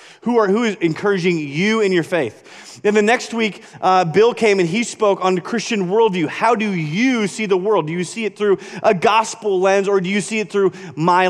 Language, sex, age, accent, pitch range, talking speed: English, male, 30-49, American, 160-215 Hz, 235 wpm